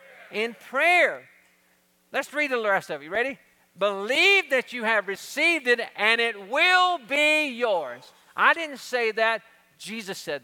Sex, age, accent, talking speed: male, 50-69, American, 155 wpm